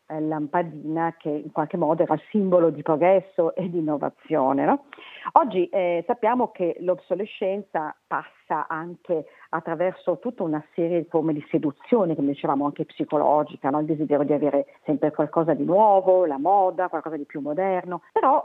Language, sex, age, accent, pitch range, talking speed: Italian, female, 40-59, native, 155-195 Hz, 155 wpm